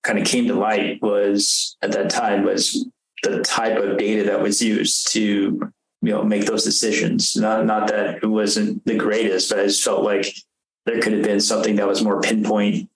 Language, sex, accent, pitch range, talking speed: English, male, American, 100-110 Hz, 205 wpm